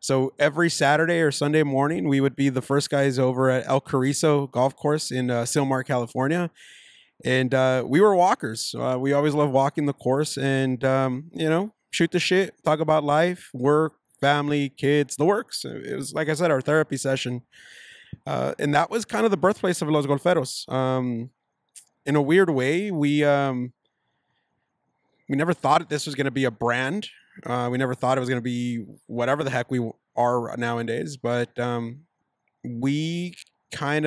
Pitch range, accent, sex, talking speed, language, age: 125-150 Hz, American, male, 185 wpm, English, 20-39